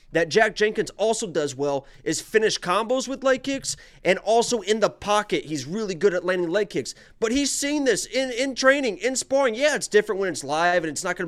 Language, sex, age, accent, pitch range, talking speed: English, male, 30-49, American, 165-240 Hz, 230 wpm